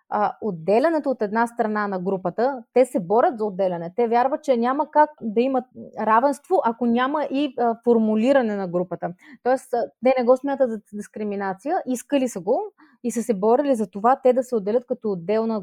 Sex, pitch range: female, 210-255 Hz